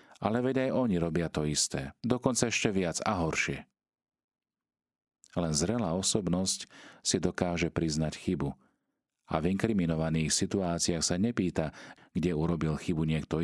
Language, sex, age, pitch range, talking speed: Slovak, male, 40-59, 75-90 Hz, 130 wpm